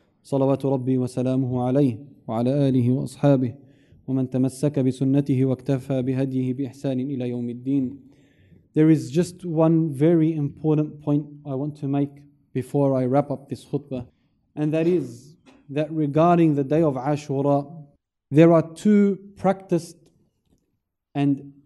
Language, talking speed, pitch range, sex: English, 85 wpm, 130-170 Hz, male